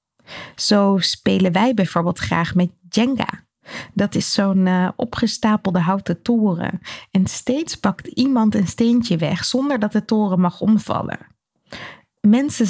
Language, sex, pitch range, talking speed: Dutch, female, 180-230 Hz, 130 wpm